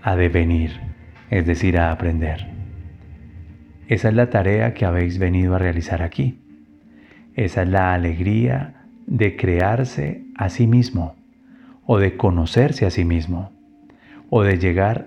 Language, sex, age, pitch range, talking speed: Spanish, male, 40-59, 85-120 Hz, 135 wpm